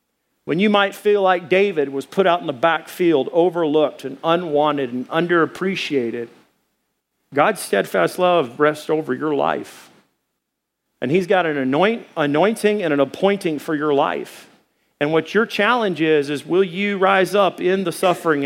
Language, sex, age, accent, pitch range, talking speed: English, male, 50-69, American, 145-190 Hz, 155 wpm